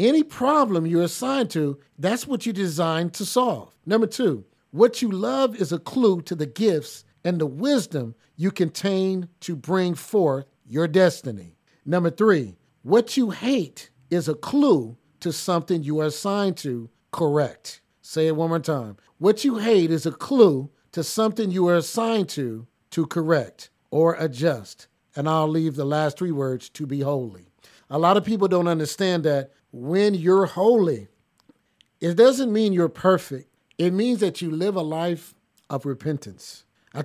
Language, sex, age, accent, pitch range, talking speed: English, male, 50-69, American, 145-190 Hz, 165 wpm